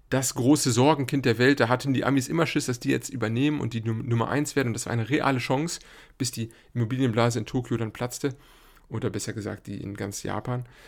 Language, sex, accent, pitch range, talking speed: German, male, German, 115-135 Hz, 220 wpm